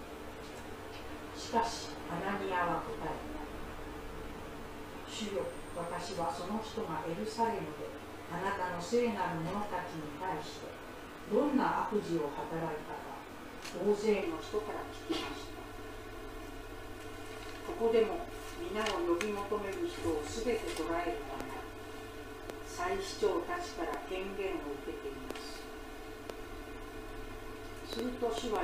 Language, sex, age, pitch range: Japanese, female, 40-59, 195-315 Hz